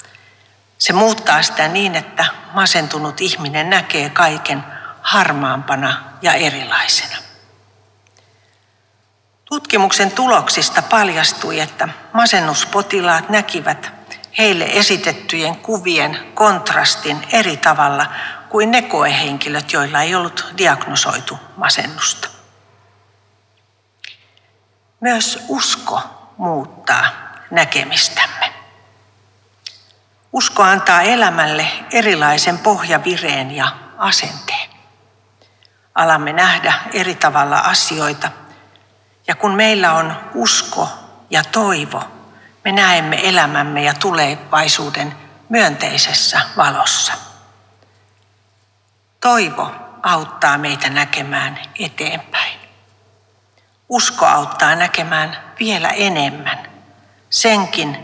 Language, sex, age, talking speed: Finnish, female, 60-79, 75 wpm